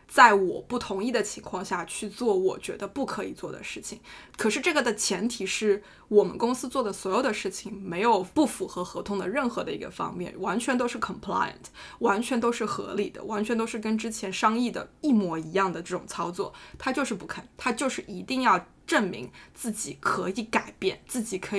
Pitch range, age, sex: 205-275 Hz, 20-39, female